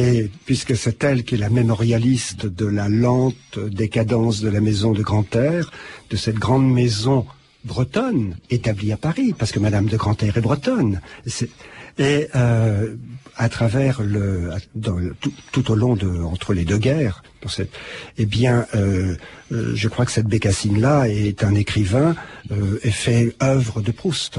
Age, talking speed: 50-69, 170 wpm